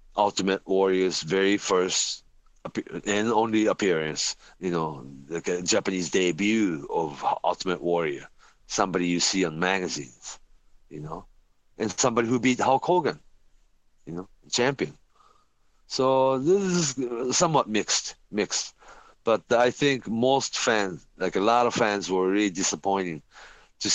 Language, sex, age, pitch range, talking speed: English, male, 40-59, 85-115 Hz, 135 wpm